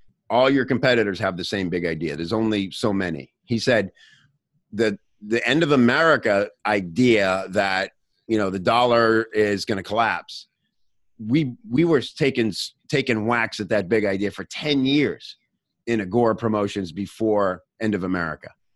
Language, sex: English, male